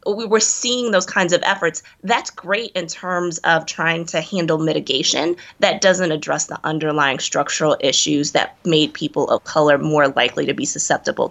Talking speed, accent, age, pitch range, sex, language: 175 wpm, American, 20-39, 155-170 Hz, female, English